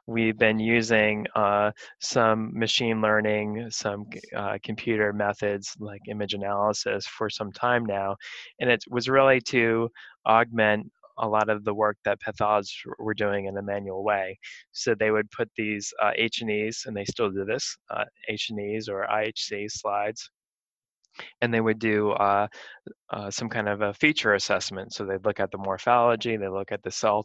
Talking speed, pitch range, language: 170 wpm, 100-110 Hz, English